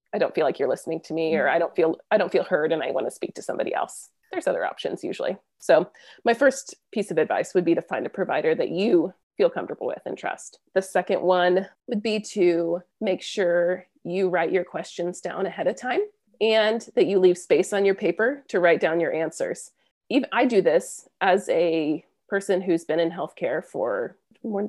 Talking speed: 215 wpm